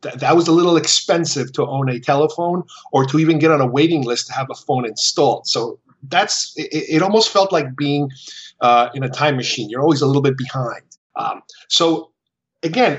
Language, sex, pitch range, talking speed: English, male, 130-155 Hz, 205 wpm